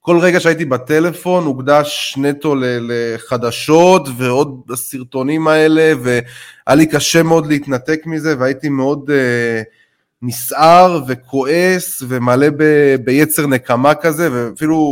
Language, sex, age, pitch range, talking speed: Hebrew, male, 20-39, 125-155 Hz, 110 wpm